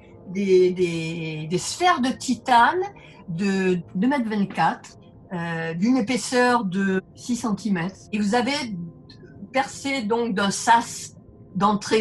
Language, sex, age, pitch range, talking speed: French, female, 50-69, 180-240 Hz, 115 wpm